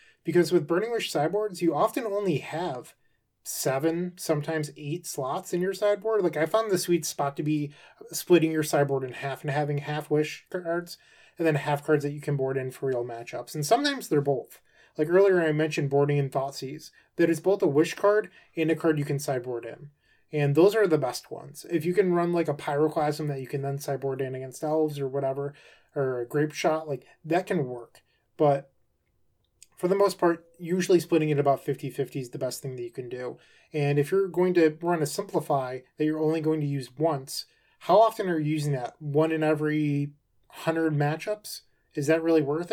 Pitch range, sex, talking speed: 140-165 Hz, male, 210 wpm